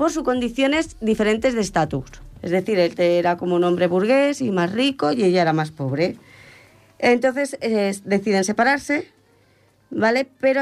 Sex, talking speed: female, 160 wpm